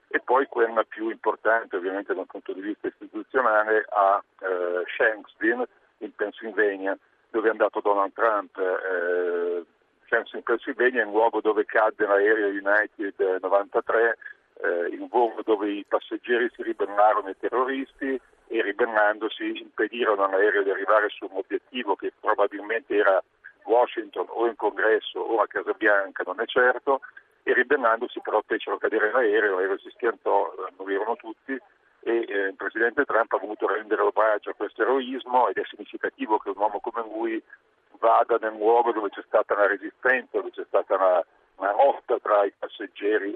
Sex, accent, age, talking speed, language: male, native, 50-69, 160 wpm, Italian